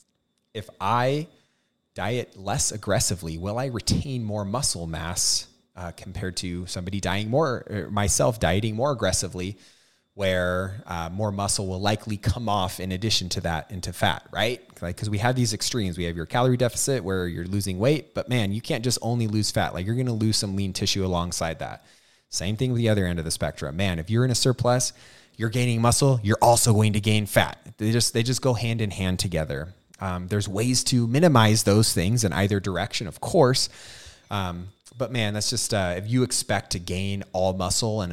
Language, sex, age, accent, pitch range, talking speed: English, male, 30-49, American, 90-110 Hz, 205 wpm